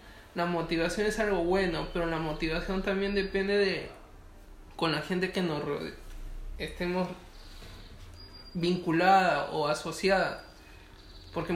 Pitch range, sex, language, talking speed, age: 155-195 Hz, male, Spanish, 115 wpm, 20-39